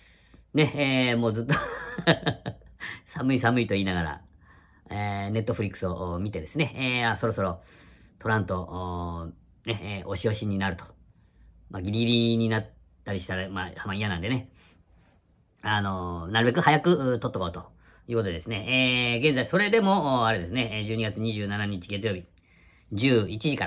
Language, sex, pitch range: Japanese, female, 90-115 Hz